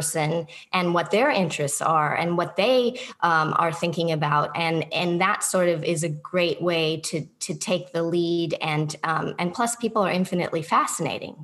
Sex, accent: female, American